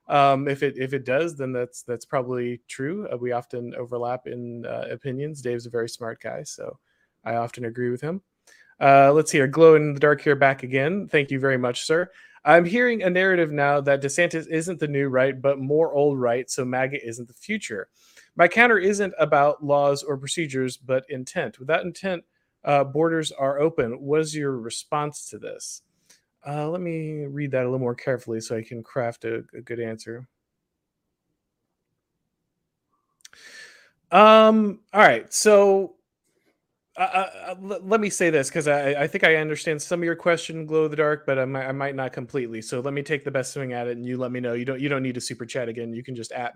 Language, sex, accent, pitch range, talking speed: English, male, American, 125-165 Hz, 205 wpm